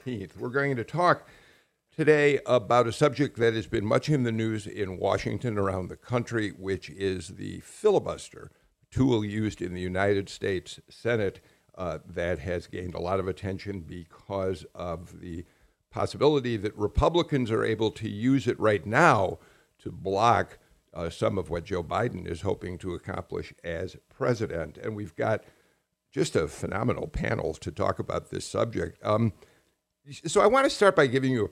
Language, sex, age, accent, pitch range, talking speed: English, male, 60-79, American, 95-130 Hz, 170 wpm